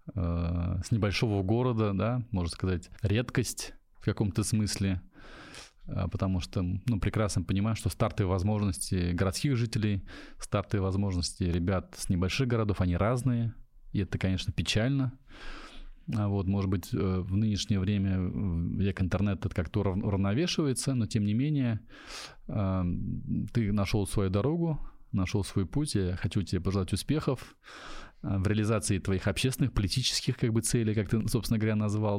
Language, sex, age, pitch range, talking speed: Russian, male, 20-39, 95-120 Hz, 130 wpm